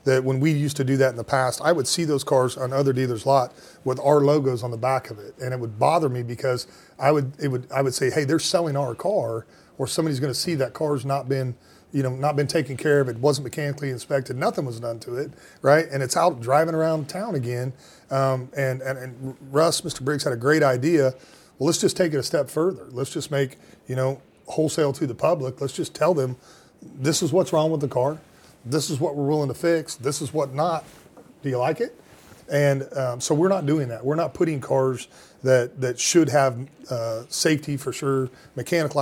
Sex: male